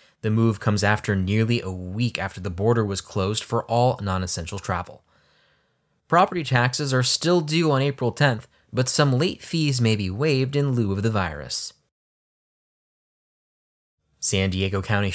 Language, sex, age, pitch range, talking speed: English, male, 20-39, 100-130 Hz, 155 wpm